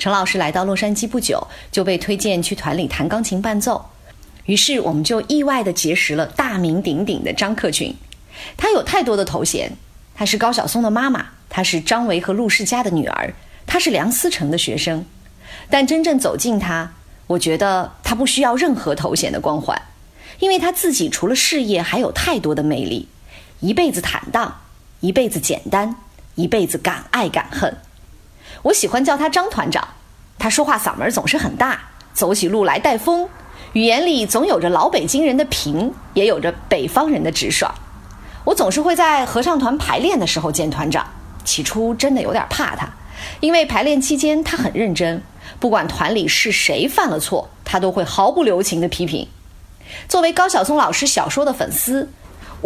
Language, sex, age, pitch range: Chinese, female, 20-39, 185-285 Hz